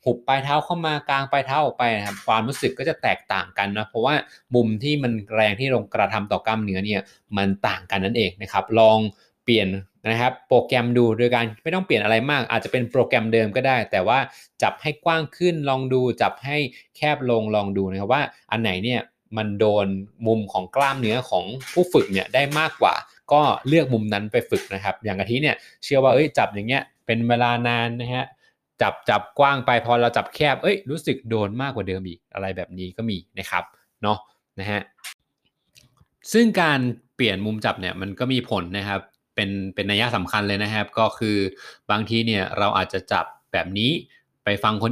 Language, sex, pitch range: Thai, male, 100-130 Hz